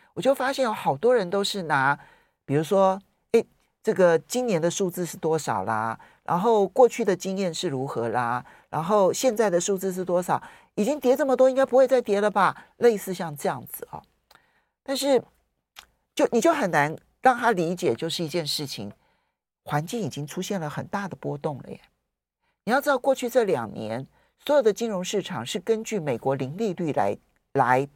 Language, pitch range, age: Chinese, 165-250 Hz, 50-69